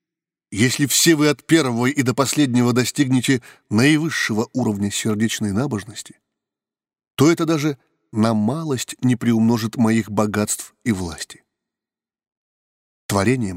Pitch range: 110-150 Hz